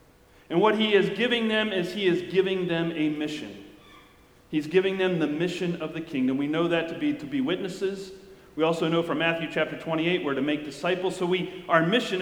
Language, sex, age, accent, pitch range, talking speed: English, male, 40-59, American, 155-185 Hz, 215 wpm